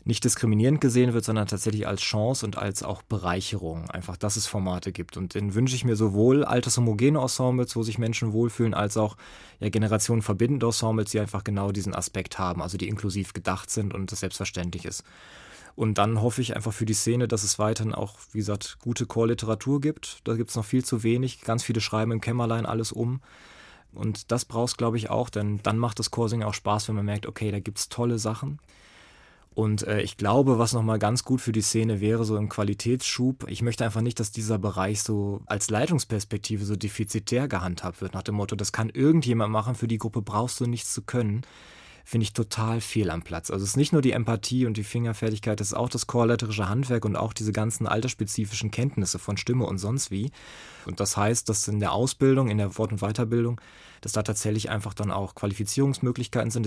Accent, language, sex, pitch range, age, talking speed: German, German, male, 105-120 Hz, 20-39, 210 wpm